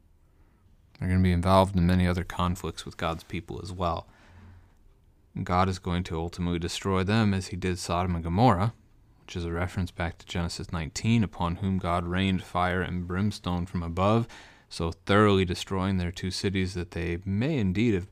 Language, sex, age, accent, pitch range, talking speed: English, male, 30-49, American, 85-100 Hz, 180 wpm